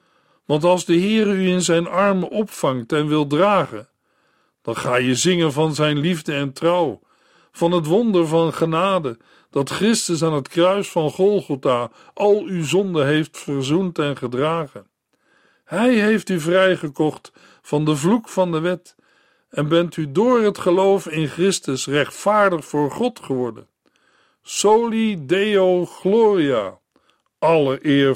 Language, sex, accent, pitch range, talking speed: Dutch, male, Dutch, 145-190 Hz, 145 wpm